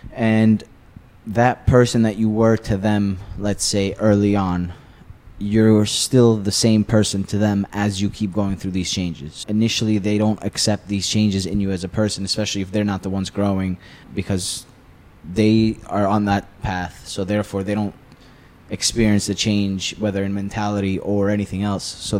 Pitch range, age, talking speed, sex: 95-110 Hz, 20-39, 175 wpm, male